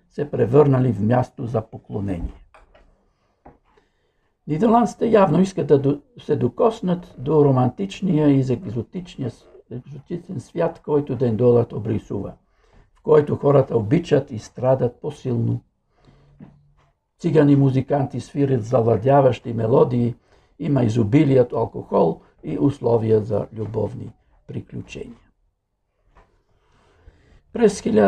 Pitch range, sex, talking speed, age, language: 120-155 Hz, male, 90 wpm, 60-79, Bulgarian